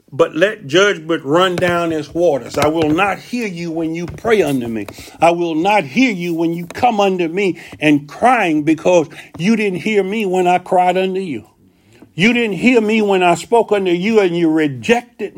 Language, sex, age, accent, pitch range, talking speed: English, male, 50-69, American, 170-220 Hz, 200 wpm